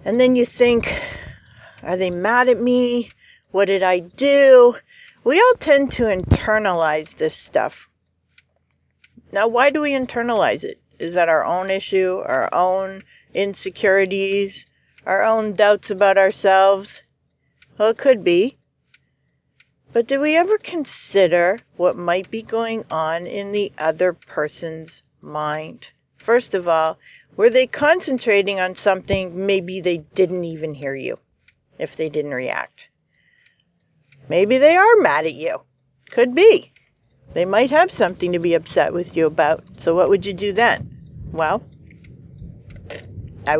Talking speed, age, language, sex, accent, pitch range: 140 wpm, 50-69, English, female, American, 170-245 Hz